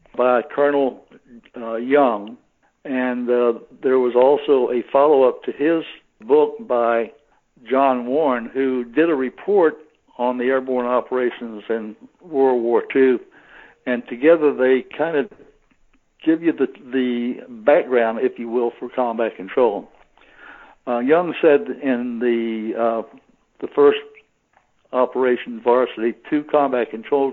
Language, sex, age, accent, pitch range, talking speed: English, male, 60-79, American, 120-145 Hz, 125 wpm